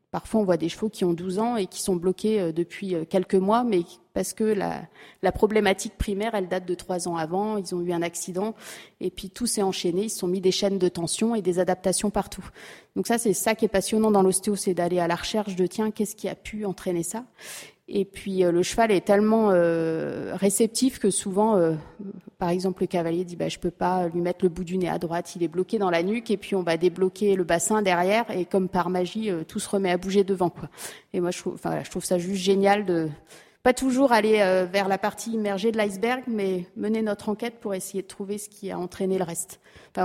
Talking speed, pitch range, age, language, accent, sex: 245 wpm, 180-205 Hz, 30-49, French, French, female